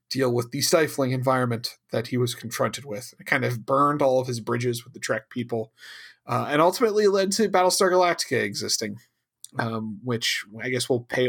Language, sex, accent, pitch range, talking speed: English, male, American, 115-170 Hz, 190 wpm